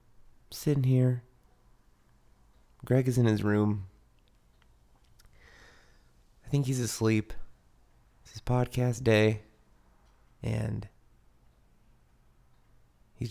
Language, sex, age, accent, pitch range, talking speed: English, male, 30-49, American, 100-125 Hz, 75 wpm